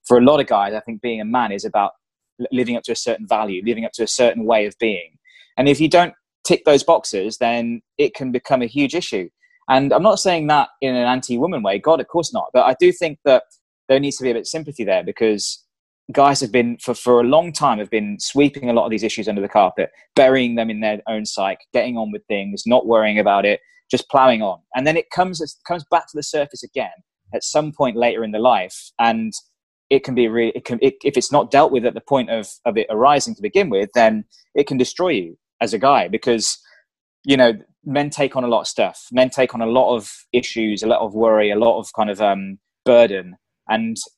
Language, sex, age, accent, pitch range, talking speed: English, male, 20-39, British, 110-145 Hz, 245 wpm